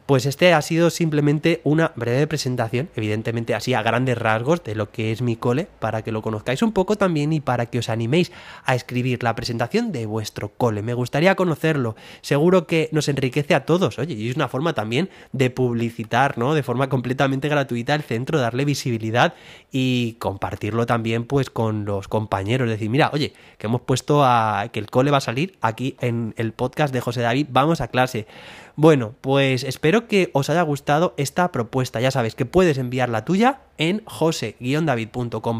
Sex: male